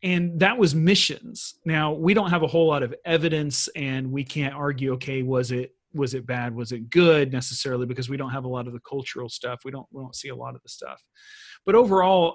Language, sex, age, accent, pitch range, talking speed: English, male, 40-59, American, 130-175 Hz, 240 wpm